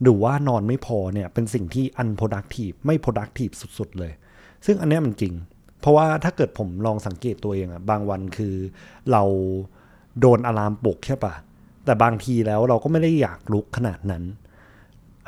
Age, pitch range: 20-39, 100-130 Hz